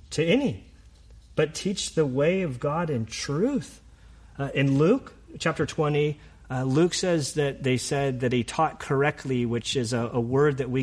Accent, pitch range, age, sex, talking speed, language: American, 115-150 Hz, 40-59, male, 175 wpm, English